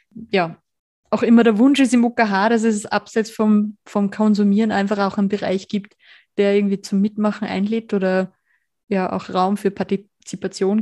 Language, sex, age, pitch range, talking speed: German, female, 20-39, 195-220 Hz, 165 wpm